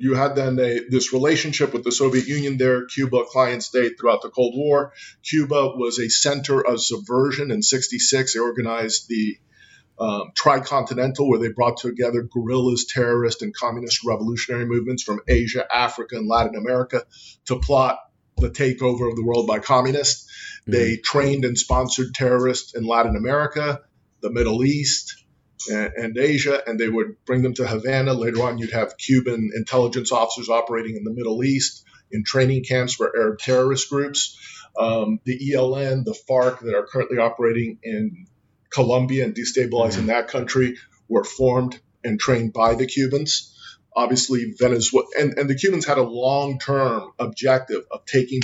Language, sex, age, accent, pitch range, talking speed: English, male, 50-69, American, 115-135 Hz, 160 wpm